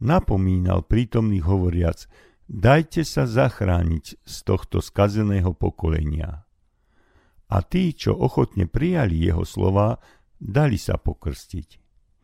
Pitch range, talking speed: 90-115 Hz, 100 wpm